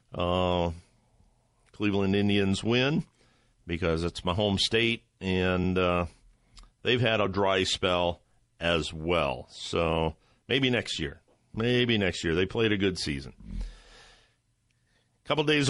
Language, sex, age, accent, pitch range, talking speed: English, male, 50-69, American, 95-120 Hz, 125 wpm